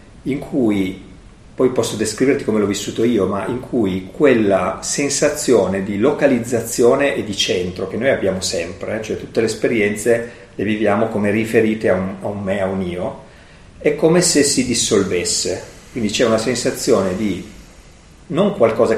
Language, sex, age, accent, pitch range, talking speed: Italian, male, 40-59, native, 100-145 Hz, 160 wpm